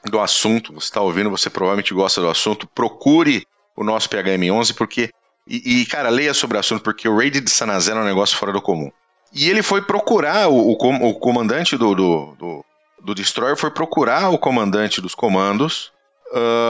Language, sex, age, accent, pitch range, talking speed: Portuguese, male, 40-59, Brazilian, 95-135 Hz, 185 wpm